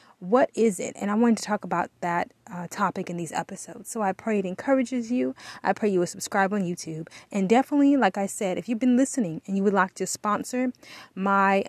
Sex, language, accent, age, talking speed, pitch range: female, English, American, 20-39, 225 wpm, 190-255 Hz